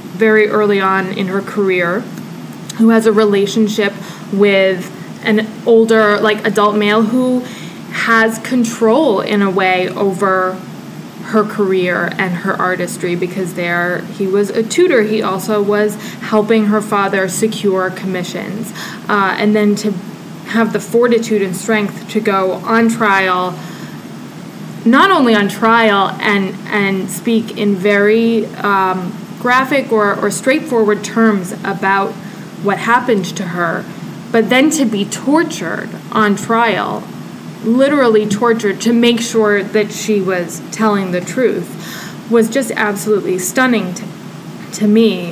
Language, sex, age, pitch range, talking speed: English, female, 20-39, 195-225 Hz, 130 wpm